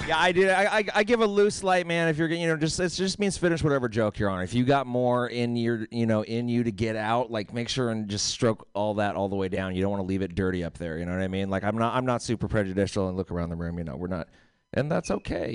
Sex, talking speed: male, 320 wpm